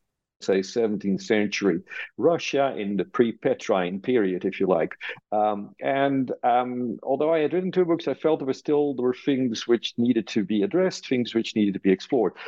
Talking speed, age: 190 wpm, 50-69